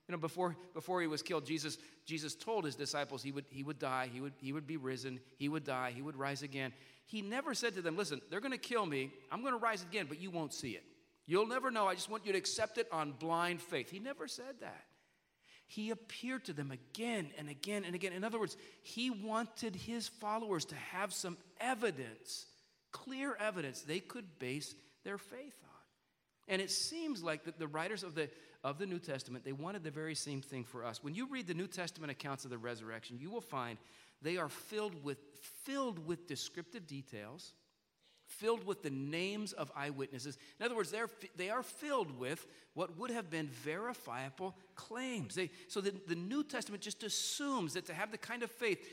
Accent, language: American, English